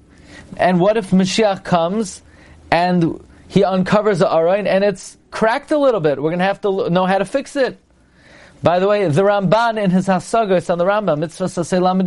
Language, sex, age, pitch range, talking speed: English, male, 40-59, 145-185 Hz, 195 wpm